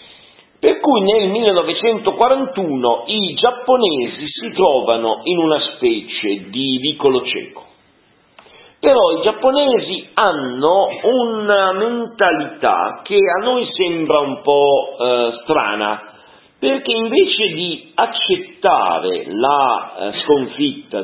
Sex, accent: male, native